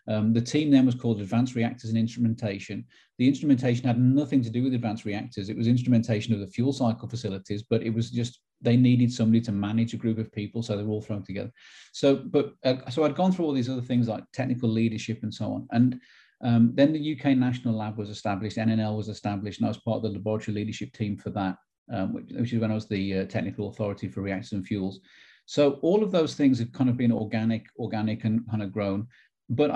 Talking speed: 235 wpm